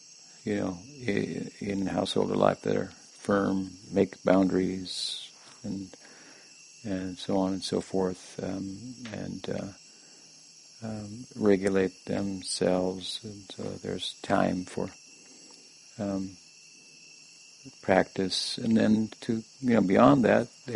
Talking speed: 110 wpm